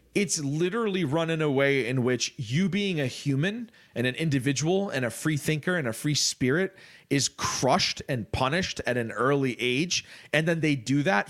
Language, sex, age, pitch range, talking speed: English, male, 30-49, 120-155 Hz, 190 wpm